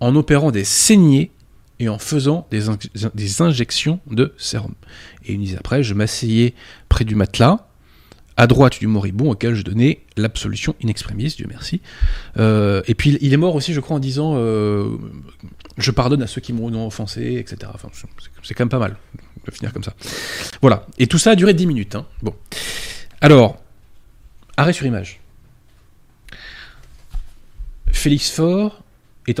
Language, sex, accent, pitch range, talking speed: French, male, French, 110-145 Hz, 165 wpm